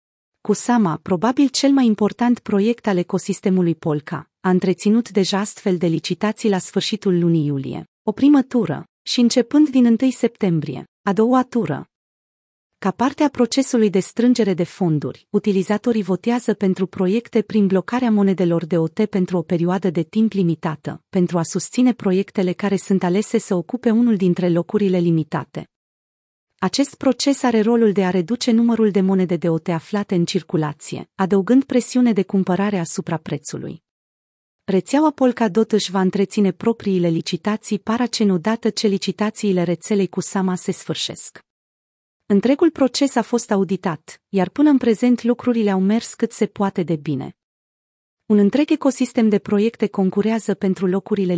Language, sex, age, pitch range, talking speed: Romanian, female, 30-49, 180-230 Hz, 150 wpm